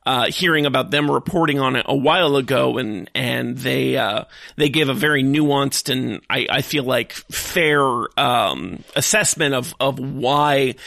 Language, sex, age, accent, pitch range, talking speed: English, male, 40-59, American, 130-145 Hz, 165 wpm